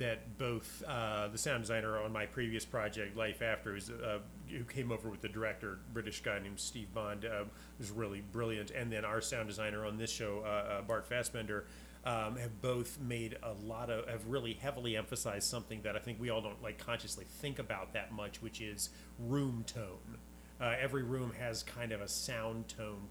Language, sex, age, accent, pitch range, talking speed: English, male, 30-49, American, 110-125 Hz, 205 wpm